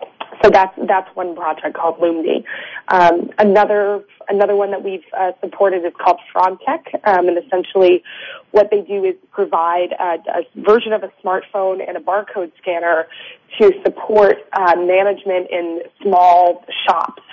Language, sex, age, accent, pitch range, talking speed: English, female, 20-39, American, 170-200 Hz, 150 wpm